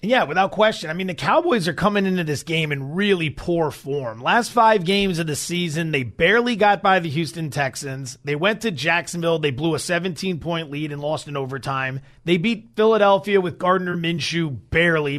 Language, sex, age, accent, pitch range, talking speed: English, male, 30-49, American, 155-210 Hz, 195 wpm